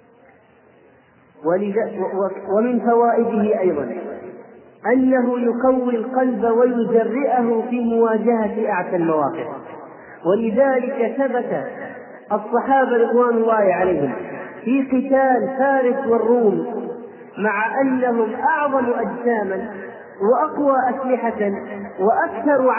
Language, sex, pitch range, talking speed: Arabic, male, 220-270 Hz, 75 wpm